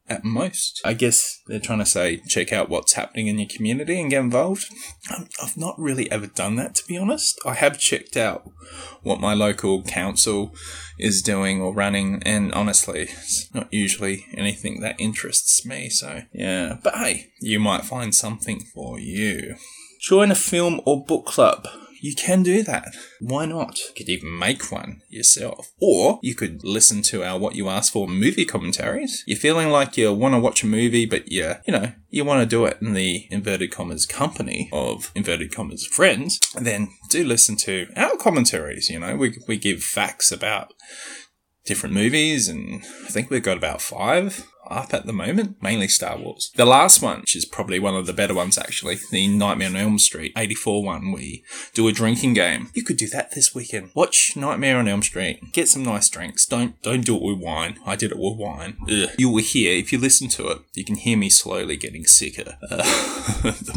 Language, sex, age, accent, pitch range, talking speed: English, male, 20-39, Australian, 100-130 Hz, 200 wpm